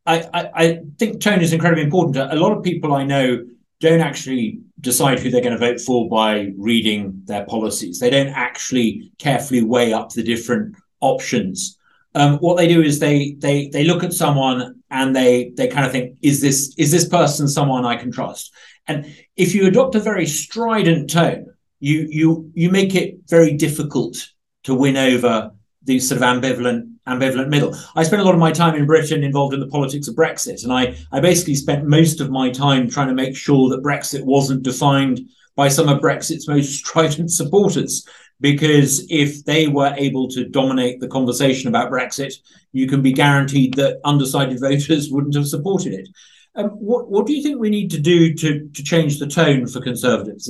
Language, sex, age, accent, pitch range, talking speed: English, male, 30-49, British, 130-165 Hz, 195 wpm